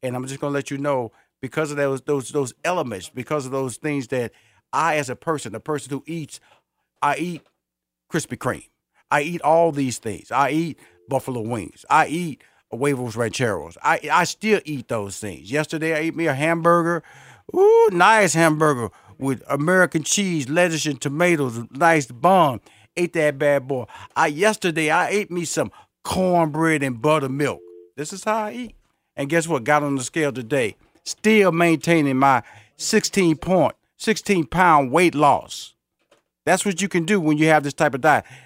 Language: English